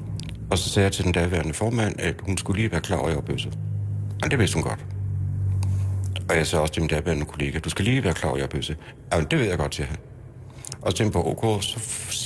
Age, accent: 60-79, native